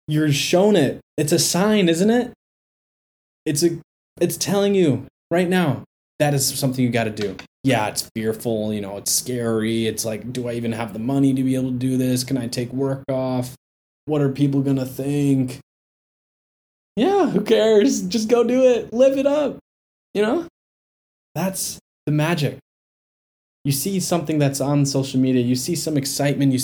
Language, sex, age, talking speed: English, male, 20-39, 180 wpm